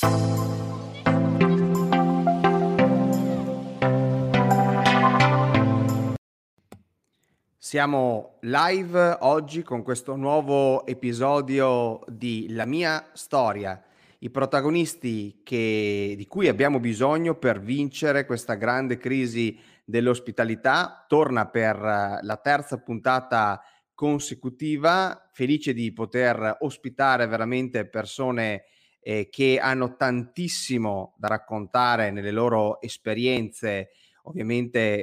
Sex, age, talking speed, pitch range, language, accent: male, 30-49, 75 wpm, 110-135 Hz, Italian, native